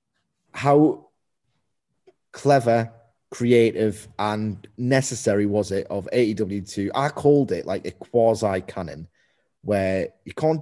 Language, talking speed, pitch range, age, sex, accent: English, 105 wpm, 100-130 Hz, 30-49, male, British